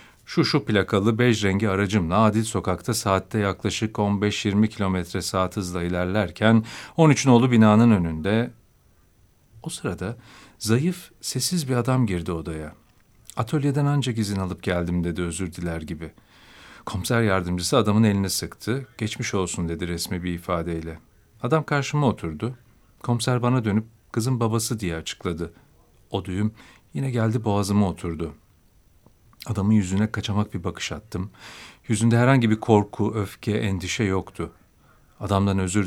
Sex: male